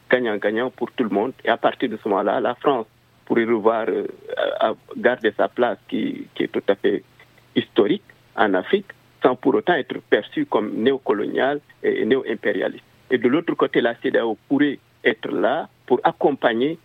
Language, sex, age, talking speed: French, male, 50-69, 175 wpm